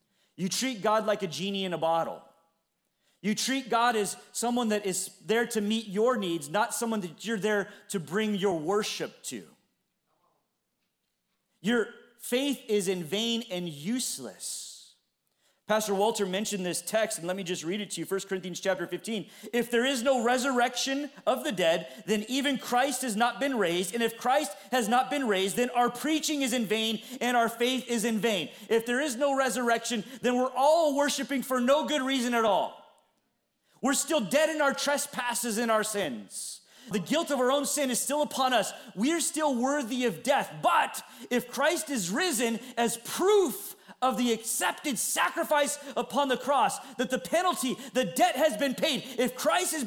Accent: American